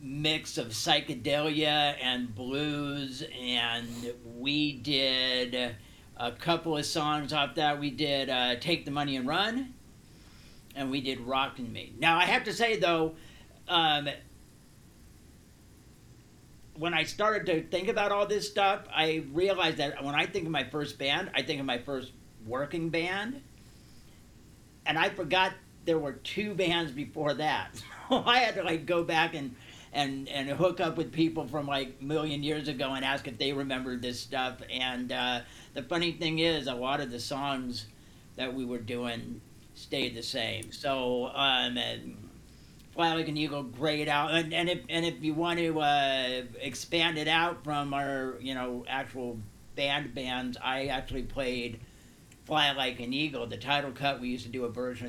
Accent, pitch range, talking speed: American, 125-160 Hz, 170 wpm